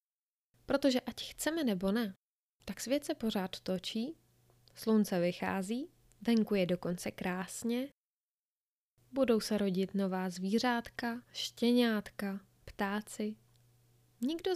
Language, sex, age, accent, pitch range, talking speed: Czech, female, 20-39, native, 195-245 Hz, 100 wpm